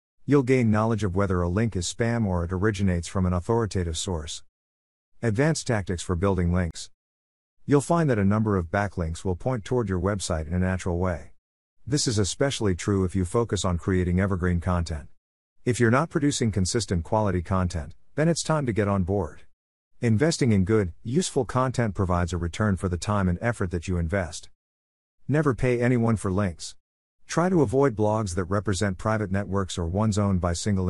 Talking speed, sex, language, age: 185 wpm, male, English, 50-69